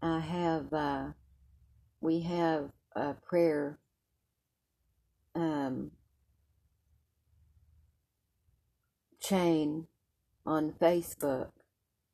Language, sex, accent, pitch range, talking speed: English, female, American, 100-160 Hz, 55 wpm